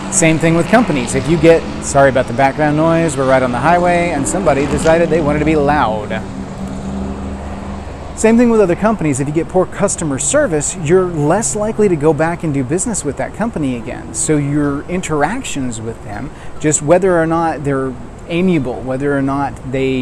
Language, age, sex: English, 30-49, male